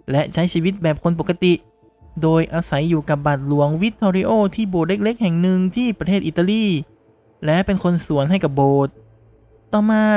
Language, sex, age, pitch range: Thai, male, 20-39, 150-200 Hz